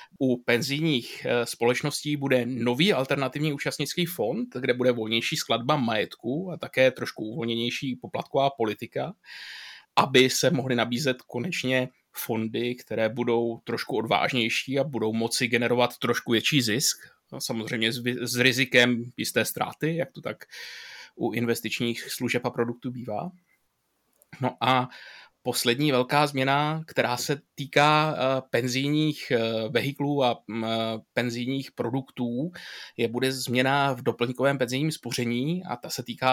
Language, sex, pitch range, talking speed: Czech, male, 120-135 Hz, 125 wpm